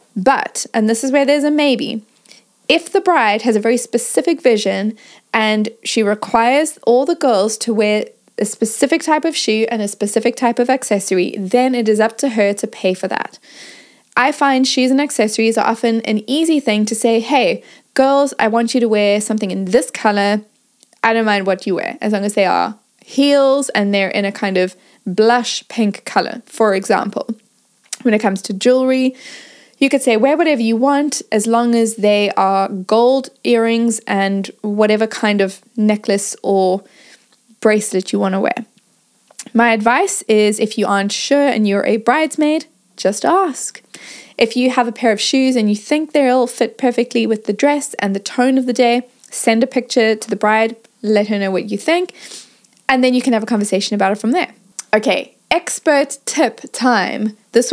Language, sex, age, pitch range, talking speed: English, female, 10-29, 210-260 Hz, 190 wpm